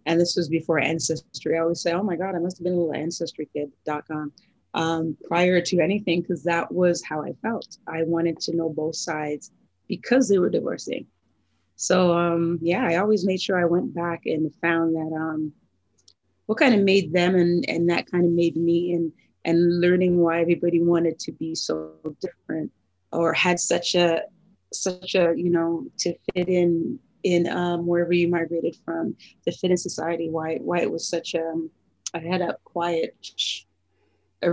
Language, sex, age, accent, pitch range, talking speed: English, female, 30-49, American, 165-180 Hz, 185 wpm